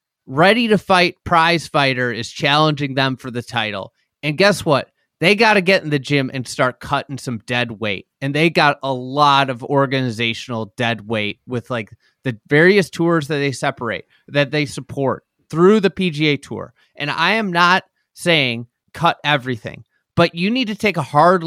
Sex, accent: male, American